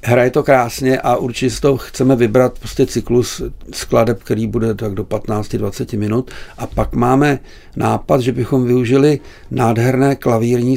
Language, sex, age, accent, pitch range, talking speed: Czech, male, 60-79, native, 110-120 Hz, 140 wpm